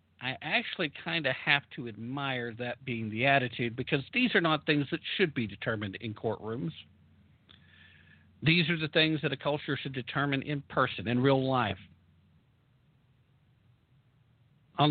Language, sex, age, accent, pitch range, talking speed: English, male, 50-69, American, 115-150 Hz, 150 wpm